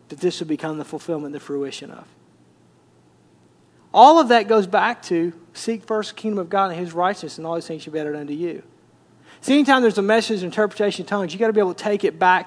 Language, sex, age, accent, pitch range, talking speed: English, male, 40-59, American, 185-235 Hz, 240 wpm